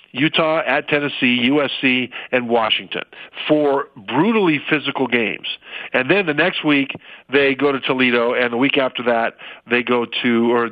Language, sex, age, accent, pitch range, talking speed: English, male, 50-69, American, 125-145 Hz, 155 wpm